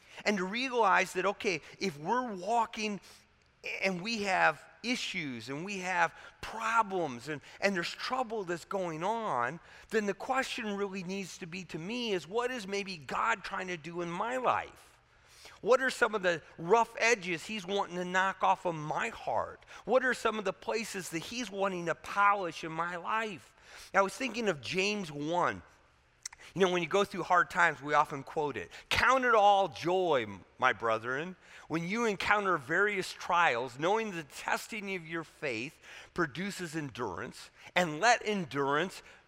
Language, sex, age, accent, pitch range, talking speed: English, male, 40-59, American, 160-205 Hz, 170 wpm